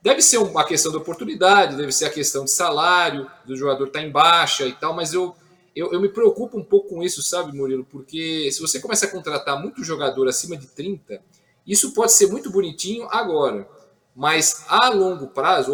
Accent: Brazilian